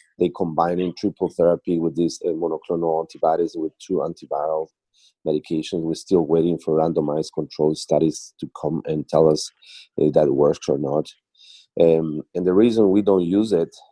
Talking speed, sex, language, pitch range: 165 wpm, male, English, 80-90 Hz